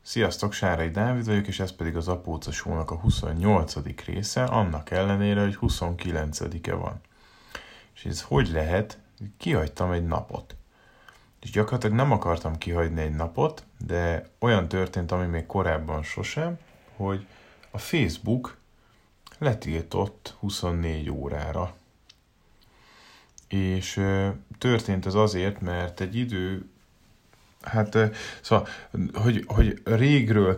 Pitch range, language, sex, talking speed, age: 85-105 Hz, Hungarian, male, 110 wpm, 30-49